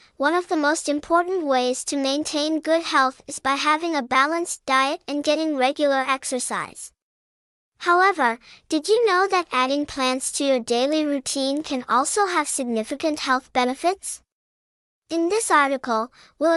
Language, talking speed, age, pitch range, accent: English, 150 wpm, 10-29, 265-330 Hz, American